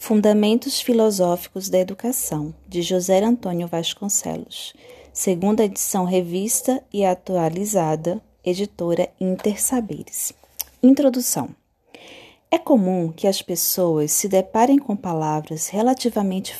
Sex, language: female, Portuguese